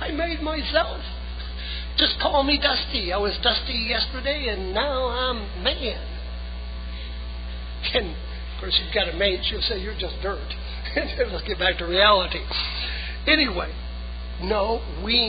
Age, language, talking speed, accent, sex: 60-79, English, 135 wpm, American, male